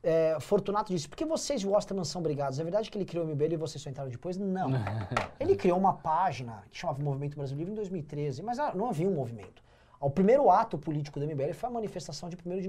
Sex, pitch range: male, 155-255 Hz